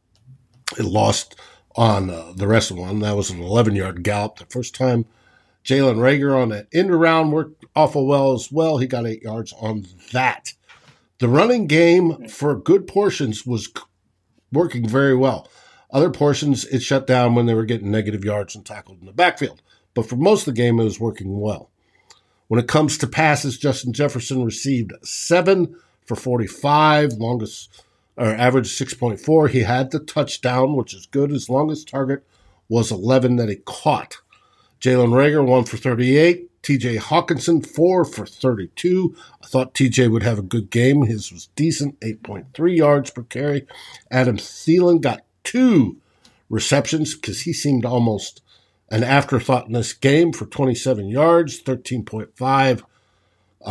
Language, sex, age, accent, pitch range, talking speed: English, male, 50-69, American, 110-145 Hz, 160 wpm